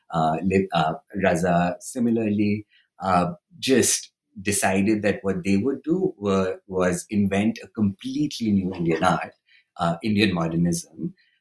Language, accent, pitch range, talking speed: English, Indian, 85-115 Hz, 120 wpm